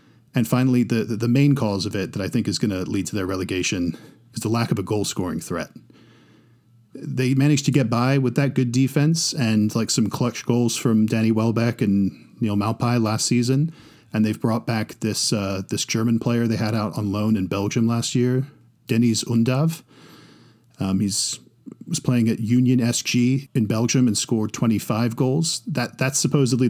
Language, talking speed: English, 190 wpm